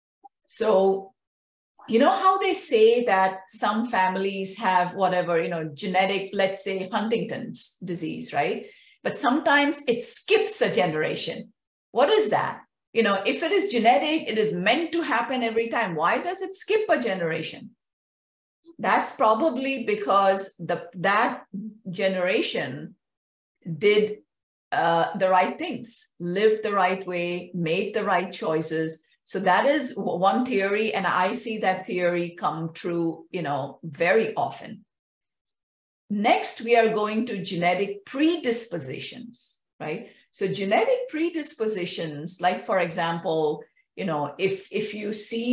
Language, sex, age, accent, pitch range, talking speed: English, female, 50-69, Indian, 185-255 Hz, 135 wpm